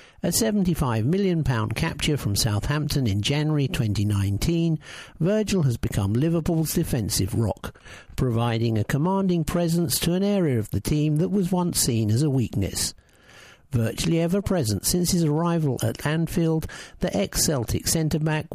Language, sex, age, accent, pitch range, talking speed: English, male, 60-79, British, 110-170 Hz, 145 wpm